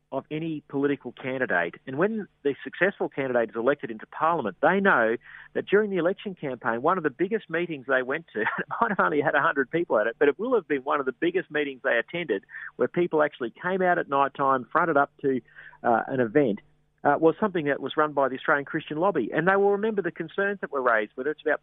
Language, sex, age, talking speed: English, male, 40-59, 240 wpm